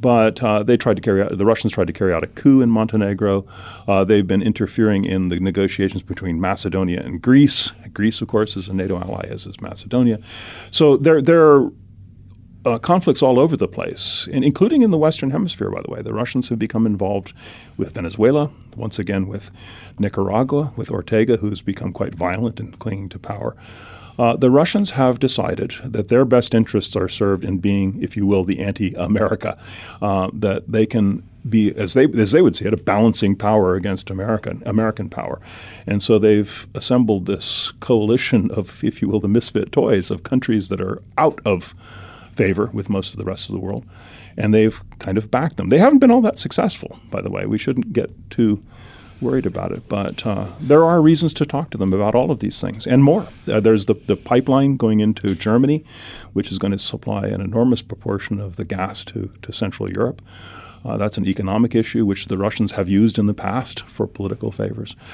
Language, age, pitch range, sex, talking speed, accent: English, 40-59, 100-120 Hz, male, 205 wpm, American